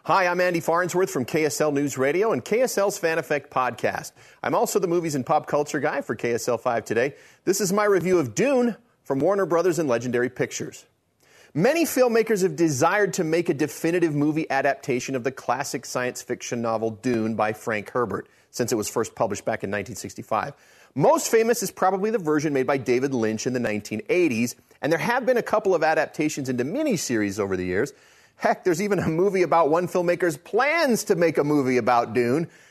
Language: English